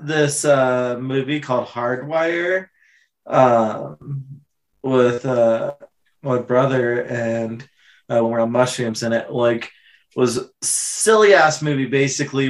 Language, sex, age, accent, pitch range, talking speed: English, male, 20-39, American, 115-140 Hz, 110 wpm